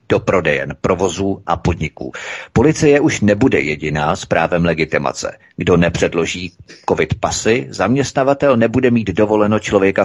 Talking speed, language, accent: 125 wpm, Czech, native